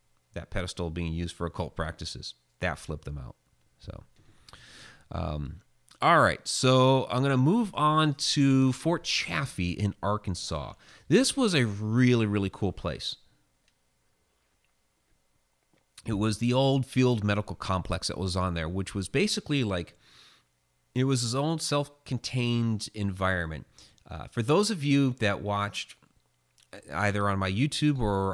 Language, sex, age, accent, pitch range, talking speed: English, male, 30-49, American, 85-120 Hz, 140 wpm